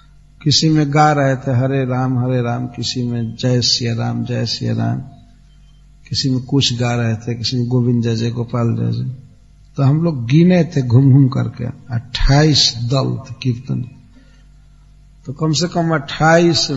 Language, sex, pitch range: English, male, 120-150 Hz